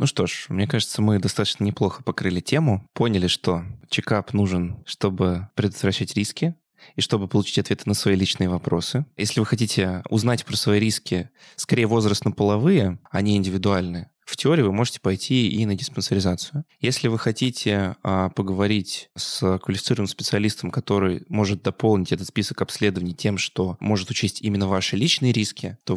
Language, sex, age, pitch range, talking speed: Russian, male, 20-39, 95-120 Hz, 155 wpm